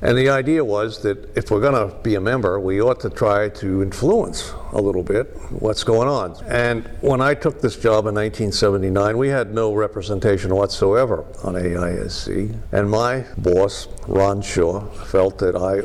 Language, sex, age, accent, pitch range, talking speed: English, male, 60-79, American, 95-115 Hz, 180 wpm